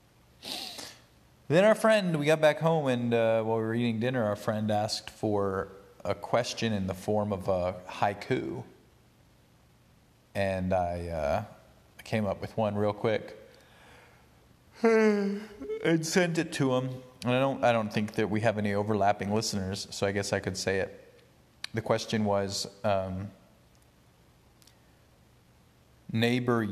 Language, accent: English, American